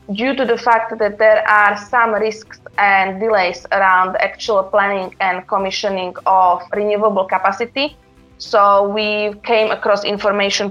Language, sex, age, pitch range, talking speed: English, female, 20-39, 190-210 Hz, 135 wpm